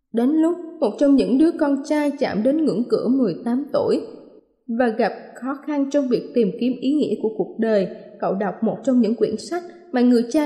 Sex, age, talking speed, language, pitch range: female, 20-39, 210 wpm, Vietnamese, 230-290 Hz